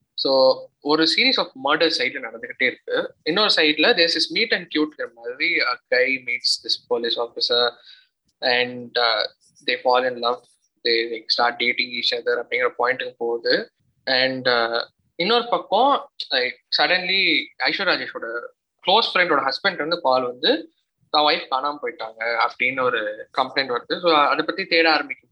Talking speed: 90 wpm